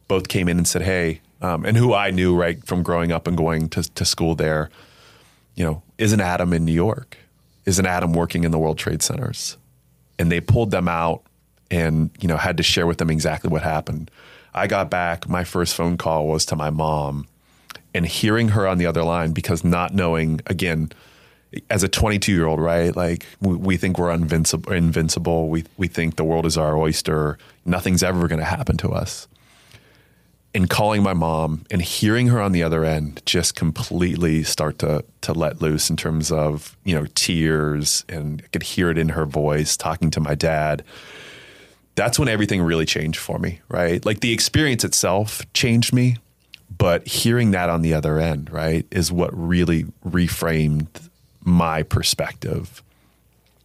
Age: 30-49